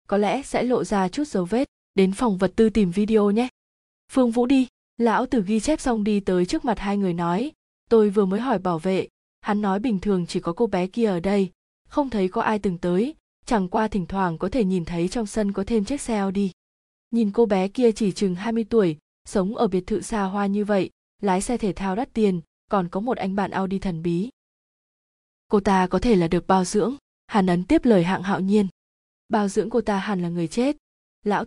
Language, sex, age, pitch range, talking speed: Vietnamese, female, 20-39, 185-230 Hz, 235 wpm